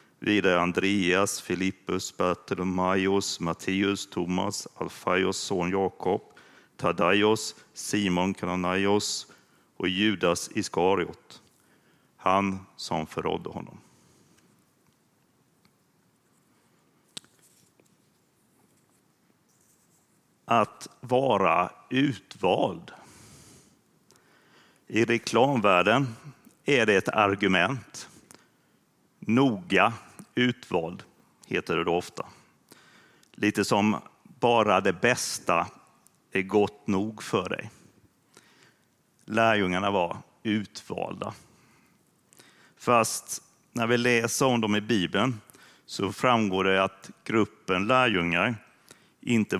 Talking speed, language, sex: 75 wpm, Swedish, male